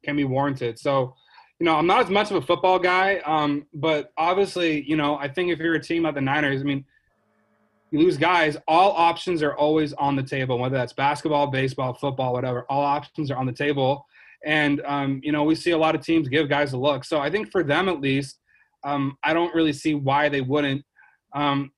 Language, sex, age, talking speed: English, male, 30-49, 225 wpm